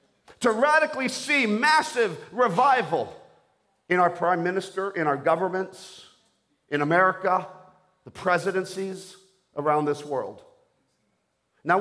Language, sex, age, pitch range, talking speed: English, male, 50-69, 190-255 Hz, 100 wpm